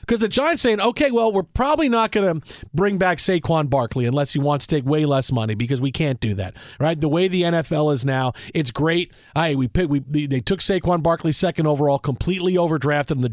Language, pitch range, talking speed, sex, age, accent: English, 135-175 Hz, 230 wpm, male, 40-59, American